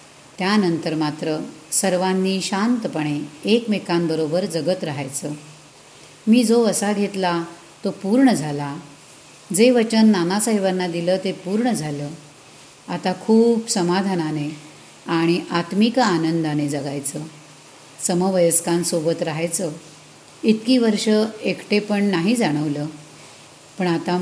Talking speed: 90 wpm